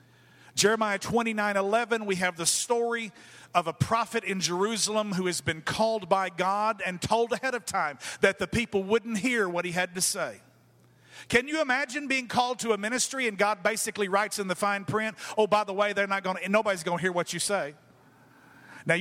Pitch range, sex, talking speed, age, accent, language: 190-240 Hz, male, 200 wpm, 50-69, American, English